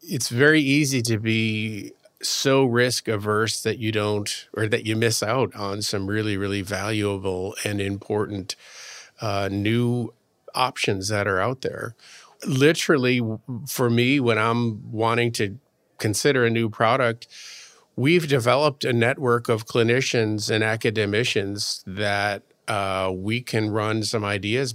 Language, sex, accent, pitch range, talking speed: English, male, American, 105-120 Hz, 135 wpm